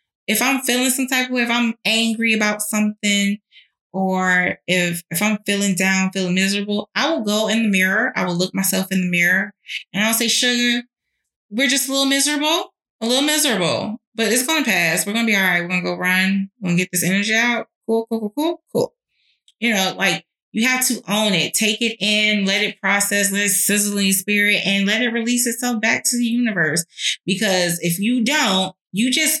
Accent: American